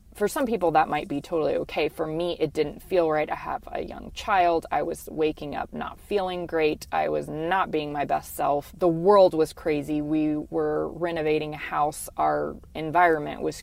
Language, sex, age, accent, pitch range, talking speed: English, female, 20-39, American, 150-185 Hz, 200 wpm